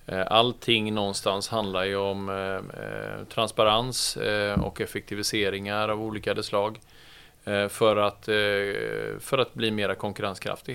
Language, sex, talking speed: Swedish, male, 125 wpm